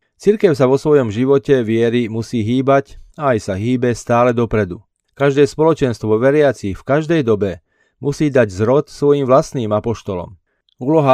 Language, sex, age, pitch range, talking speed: Slovak, male, 30-49, 110-140 Hz, 145 wpm